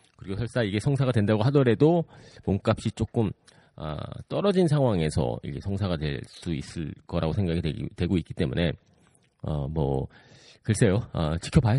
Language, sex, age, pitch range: Korean, male, 40-59, 85-130 Hz